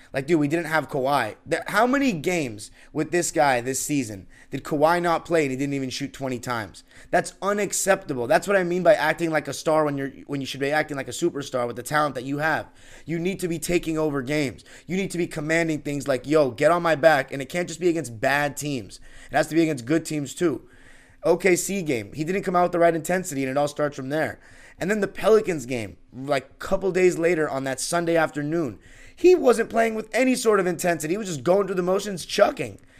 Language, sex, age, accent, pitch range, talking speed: English, male, 20-39, American, 140-185 Hz, 240 wpm